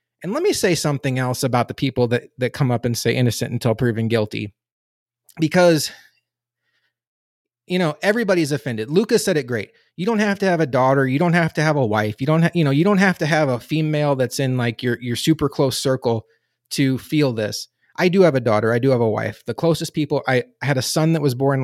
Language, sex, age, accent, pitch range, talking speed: English, male, 30-49, American, 120-160 Hz, 235 wpm